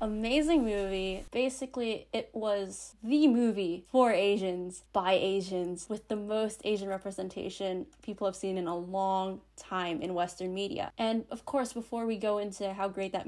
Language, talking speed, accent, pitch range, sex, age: English, 165 wpm, American, 190-230 Hz, female, 10-29